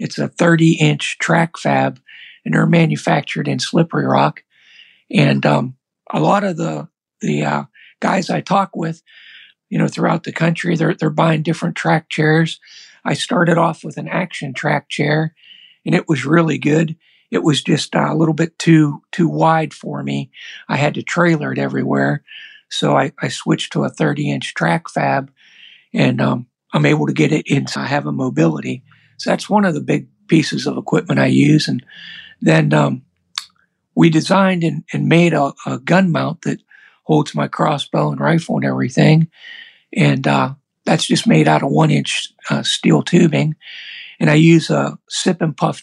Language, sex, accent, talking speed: English, male, American, 175 wpm